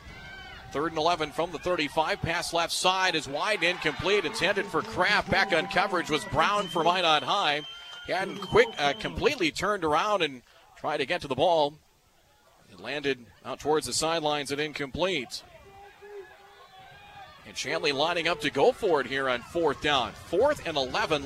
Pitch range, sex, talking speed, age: 150-190 Hz, male, 170 wpm, 40-59